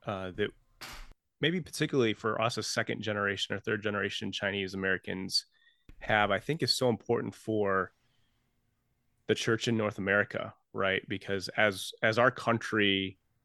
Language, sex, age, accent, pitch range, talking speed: English, male, 30-49, American, 95-120 Hz, 145 wpm